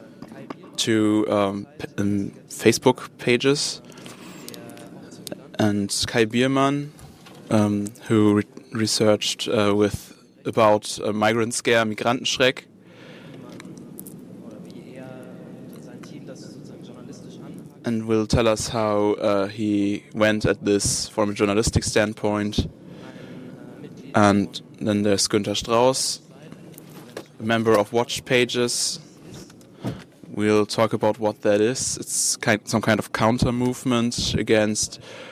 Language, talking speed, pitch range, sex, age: German, 95 wpm, 105-120 Hz, male, 20-39